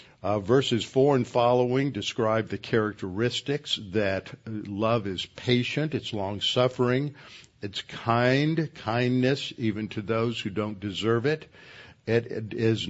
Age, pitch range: 60-79, 110-130 Hz